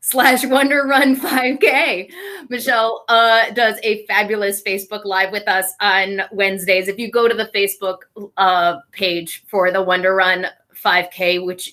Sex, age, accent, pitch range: female, 20-39, American, 185-225 Hz